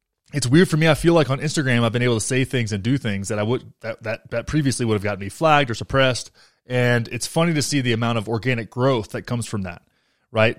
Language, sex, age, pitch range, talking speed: English, male, 20-39, 105-130 Hz, 265 wpm